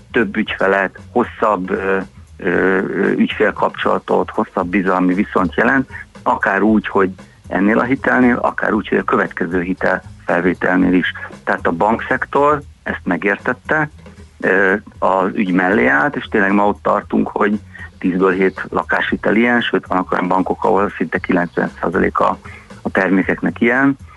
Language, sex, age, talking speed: Hungarian, male, 60-79, 130 wpm